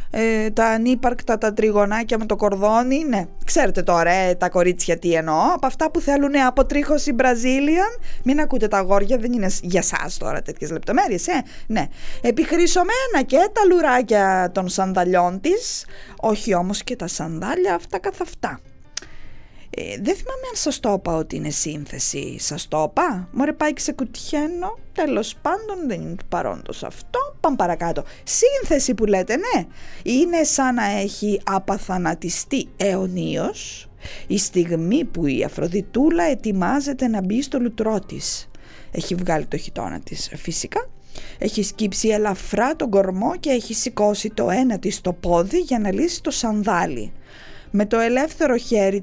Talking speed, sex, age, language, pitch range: 150 wpm, female, 20-39, English, 185-280 Hz